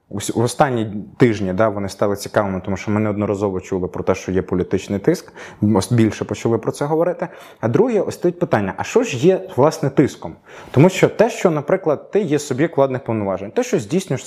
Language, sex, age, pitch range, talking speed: Ukrainian, male, 20-39, 105-140 Hz, 200 wpm